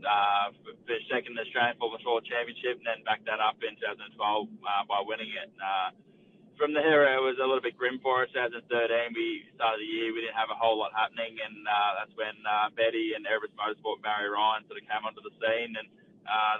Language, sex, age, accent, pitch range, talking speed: English, male, 20-39, Australian, 105-125 Hz, 220 wpm